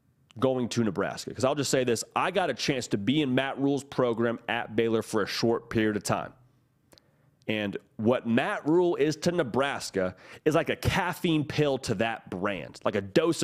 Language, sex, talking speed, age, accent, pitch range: English, male, 195 wpm, 30-49, American, 125-175 Hz